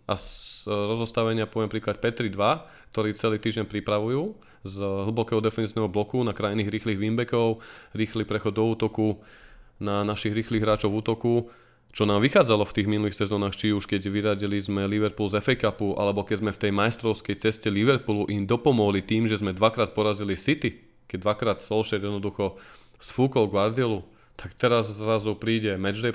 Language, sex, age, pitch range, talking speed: Slovak, male, 20-39, 100-115 Hz, 165 wpm